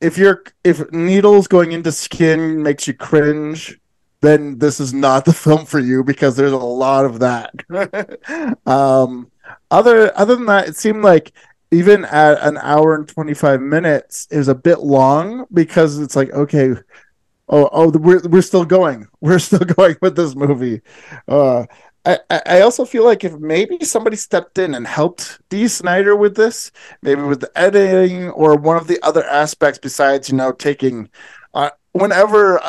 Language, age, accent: English, 20-39, American